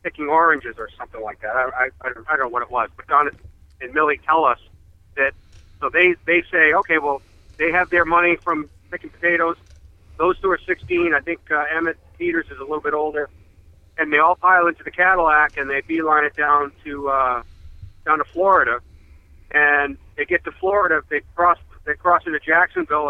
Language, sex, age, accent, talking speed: English, male, 50-69, American, 195 wpm